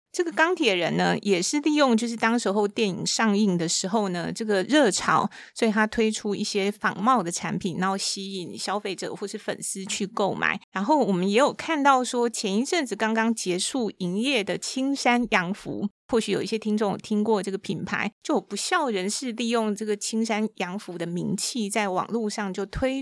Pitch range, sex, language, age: 195-245 Hz, female, Chinese, 30-49